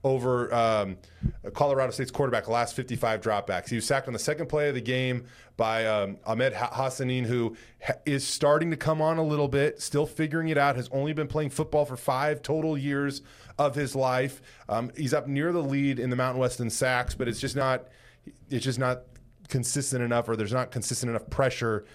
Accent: American